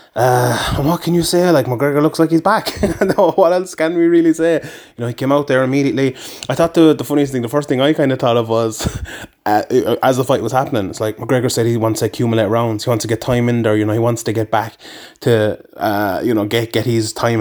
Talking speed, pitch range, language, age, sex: 265 wpm, 115-145 Hz, English, 20-39, male